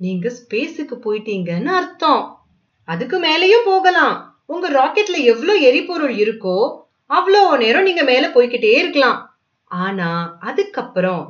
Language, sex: Tamil, female